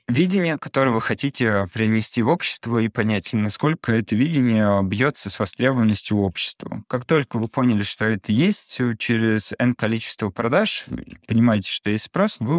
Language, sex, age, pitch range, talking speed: Russian, male, 20-39, 100-125 Hz, 155 wpm